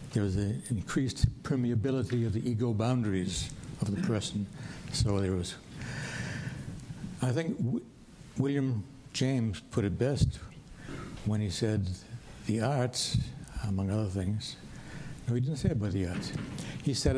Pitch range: 110-135 Hz